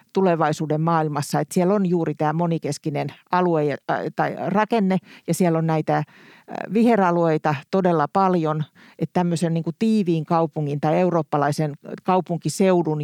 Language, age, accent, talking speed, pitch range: Finnish, 50-69, native, 115 wpm, 155-185 Hz